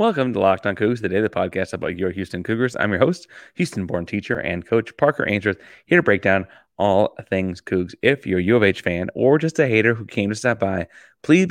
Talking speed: 230 wpm